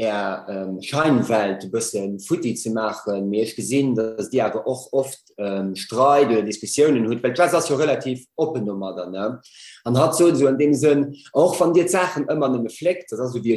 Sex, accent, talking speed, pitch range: male, German, 200 wpm, 120-160 Hz